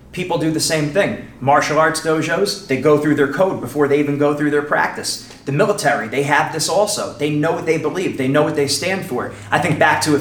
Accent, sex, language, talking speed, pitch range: American, male, English, 245 wpm, 140-165 Hz